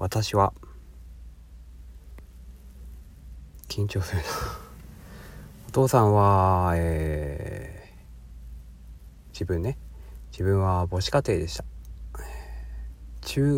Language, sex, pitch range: Japanese, male, 70-105 Hz